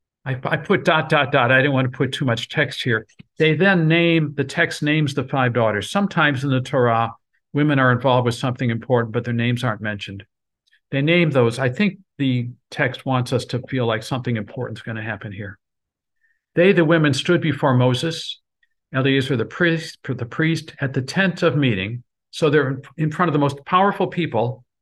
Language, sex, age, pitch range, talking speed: English, male, 50-69, 125-165 Hz, 205 wpm